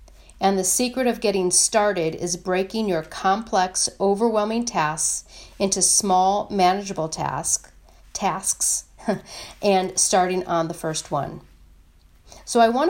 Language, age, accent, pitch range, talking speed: English, 40-59, American, 175-205 Hz, 115 wpm